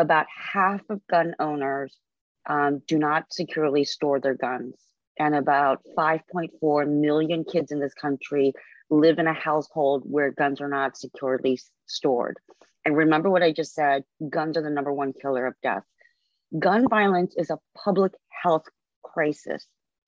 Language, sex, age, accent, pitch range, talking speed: English, female, 30-49, American, 145-180 Hz, 150 wpm